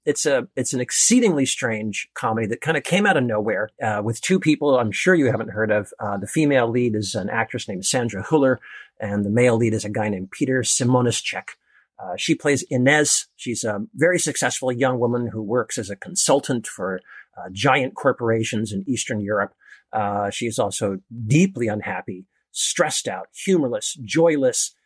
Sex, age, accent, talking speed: male, 50-69, American, 185 wpm